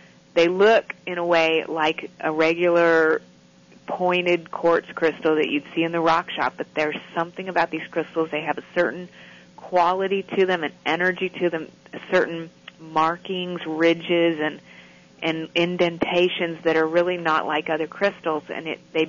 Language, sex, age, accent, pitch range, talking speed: English, female, 30-49, American, 155-180 Hz, 160 wpm